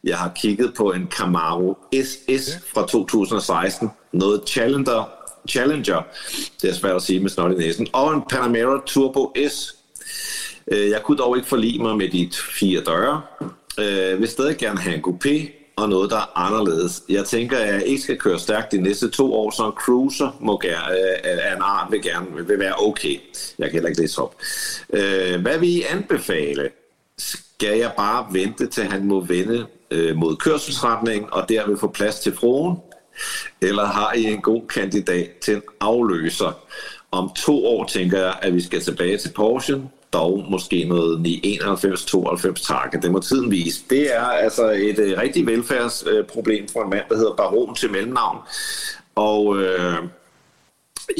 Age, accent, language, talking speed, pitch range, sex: 60-79, native, Danish, 170 wpm, 95-140 Hz, male